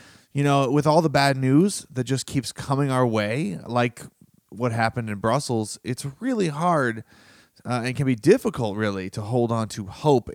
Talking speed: 185 wpm